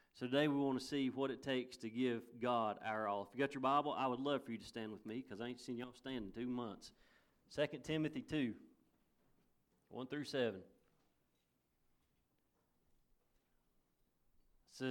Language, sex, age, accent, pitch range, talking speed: English, male, 40-59, American, 115-145 Hz, 175 wpm